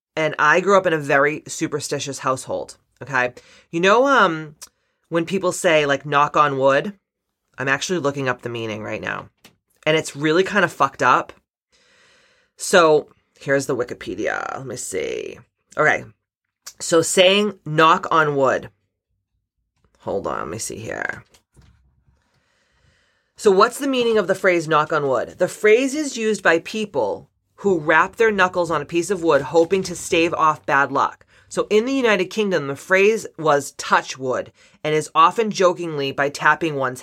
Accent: American